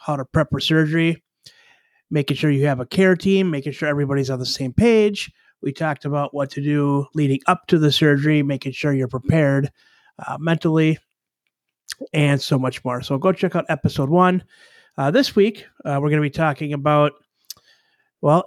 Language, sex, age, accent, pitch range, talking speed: English, male, 30-49, American, 140-165 Hz, 185 wpm